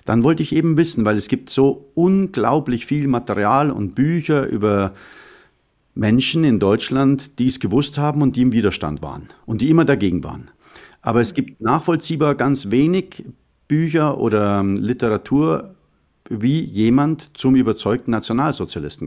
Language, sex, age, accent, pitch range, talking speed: German, male, 50-69, German, 95-135 Hz, 145 wpm